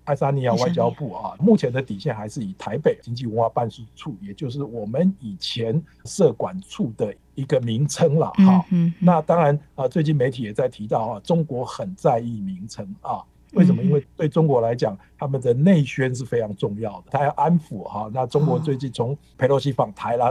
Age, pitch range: 60-79, 115-160 Hz